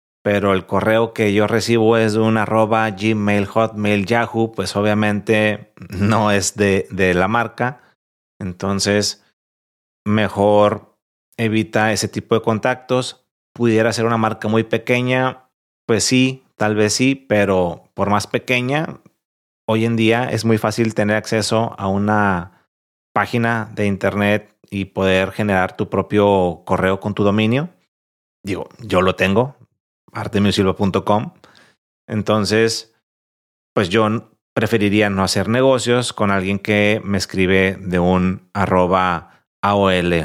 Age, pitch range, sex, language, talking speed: 30-49, 100-115 Hz, male, Spanish, 125 wpm